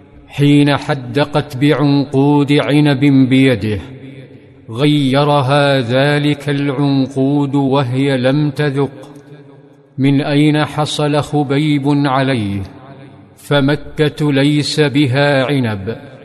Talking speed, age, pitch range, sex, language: 75 wpm, 50-69, 135-145 Hz, male, Arabic